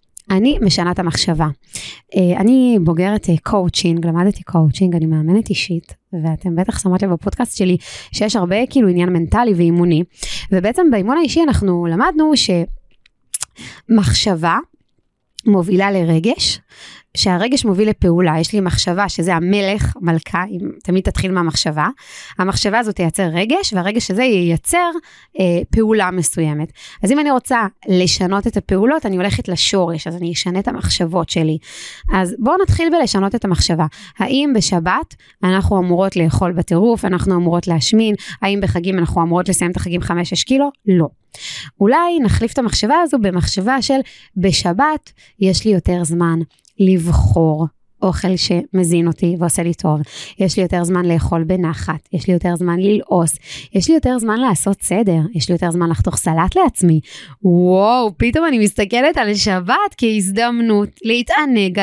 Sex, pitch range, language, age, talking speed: female, 175-235 Hz, Hebrew, 20-39, 125 wpm